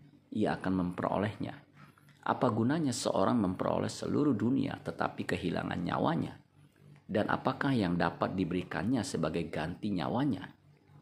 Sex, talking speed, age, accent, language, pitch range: male, 110 wpm, 40-59, native, Indonesian, 90-120 Hz